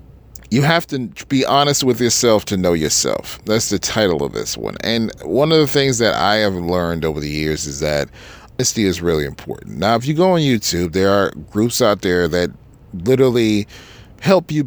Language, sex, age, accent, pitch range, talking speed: English, male, 40-59, American, 90-130 Hz, 200 wpm